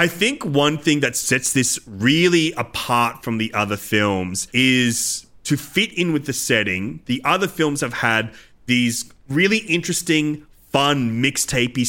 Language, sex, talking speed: English, male, 150 wpm